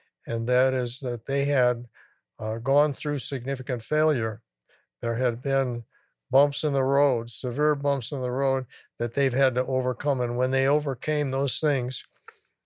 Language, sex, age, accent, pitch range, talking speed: English, male, 60-79, American, 120-145 Hz, 160 wpm